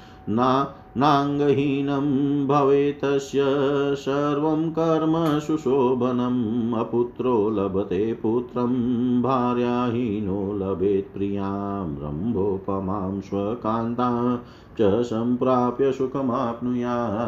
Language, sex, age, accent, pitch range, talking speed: Hindi, male, 40-59, native, 110-140 Hz, 45 wpm